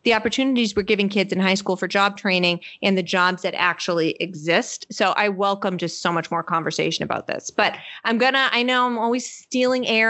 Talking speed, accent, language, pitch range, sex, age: 220 wpm, American, English, 190-235 Hz, female, 30-49